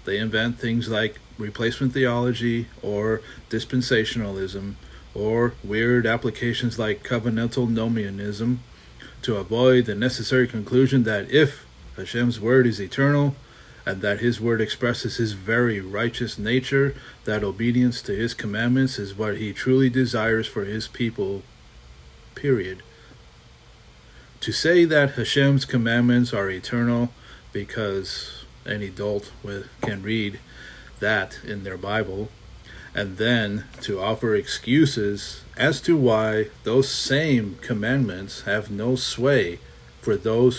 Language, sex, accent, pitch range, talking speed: English, male, American, 100-125 Hz, 120 wpm